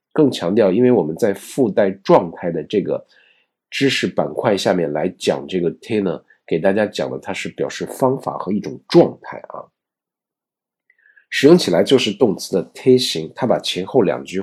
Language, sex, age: Chinese, male, 50-69